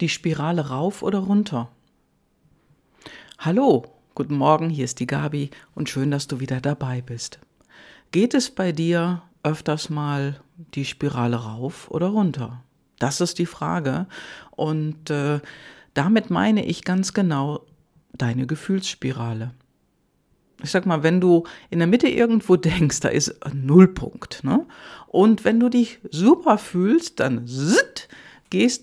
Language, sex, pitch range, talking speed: German, female, 150-210 Hz, 135 wpm